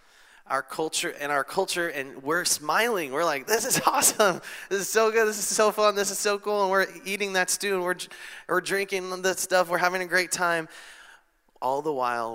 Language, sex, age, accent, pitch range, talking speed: English, male, 20-39, American, 115-155 Hz, 215 wpm